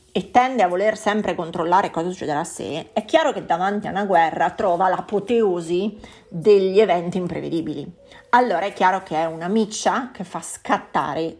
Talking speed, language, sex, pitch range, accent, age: 170 wpm, Italian, female, 175-225 Hz, native, 30-49